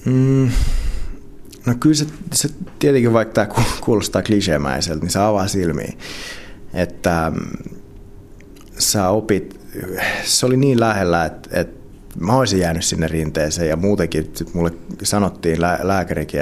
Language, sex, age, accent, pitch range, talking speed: Finnish, male, 30-49, native, 80-100 Hz, 125 wpm